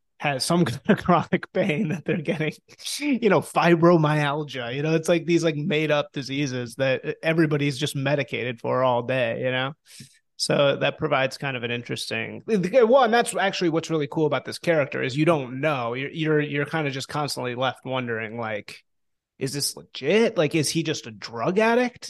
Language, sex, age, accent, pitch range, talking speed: English, male, 30-49, American, 130-165 Hz, 195 wpm